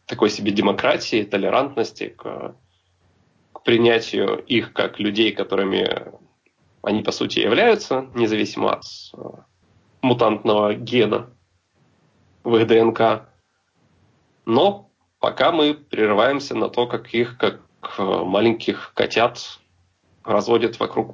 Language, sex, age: Russian, male, 20-39